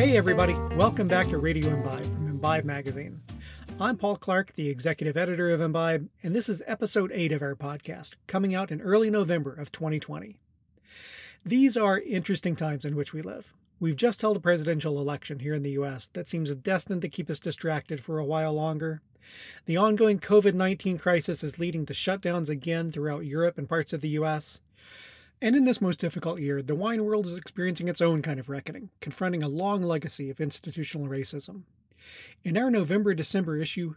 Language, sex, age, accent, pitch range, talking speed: English, male, 30-49, American, 150-190 Hz, 185 wpm